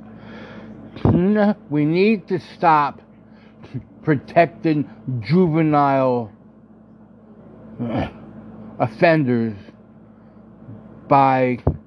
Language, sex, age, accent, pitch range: English, male, 60-79, American, 110-140 Hz